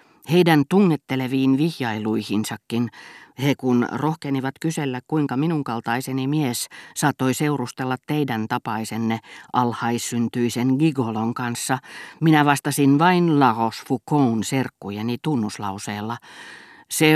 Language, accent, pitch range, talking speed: Finnish, native, 120-145 Hz, 90 wpm